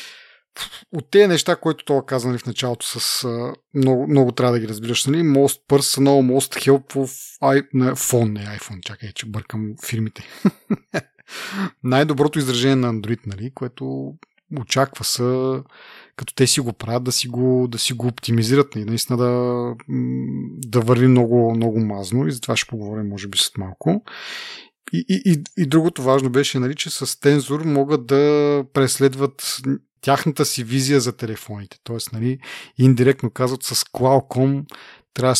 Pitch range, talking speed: 115-135 Hz, 155 wpm